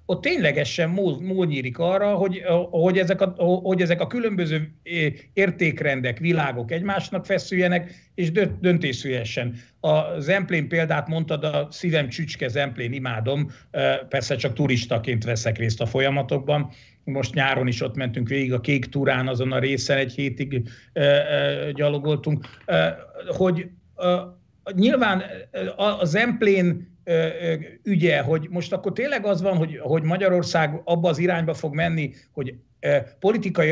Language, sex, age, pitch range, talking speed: Hungarian, male, 50-69, 135-175 Hz, 125 wpm